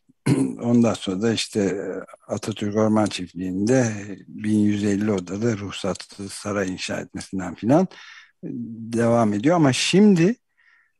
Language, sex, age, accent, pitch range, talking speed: Turkish, male, 60-79, native, 105-130 Hz, 100 wpm